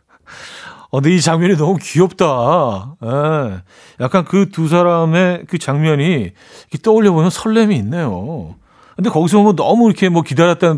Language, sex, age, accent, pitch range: Korean, male, 40-59, native, 125-175 Hz